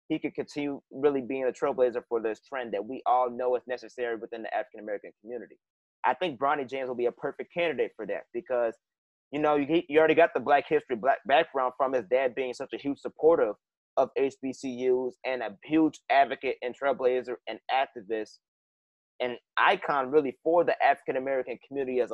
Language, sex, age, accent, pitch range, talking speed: English, male, 30-49, American, 130-160 Hz, 185 wpm